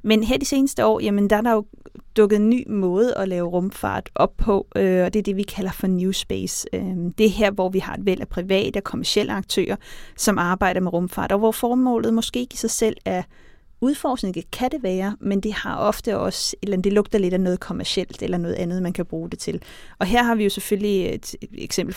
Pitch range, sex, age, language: 185-215 Hz, female, 30-49, Danish